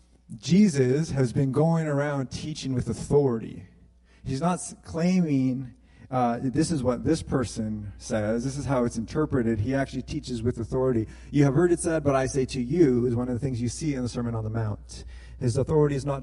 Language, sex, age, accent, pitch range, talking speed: English, male, 30-49, American, 110-150 Hz, 205 wpm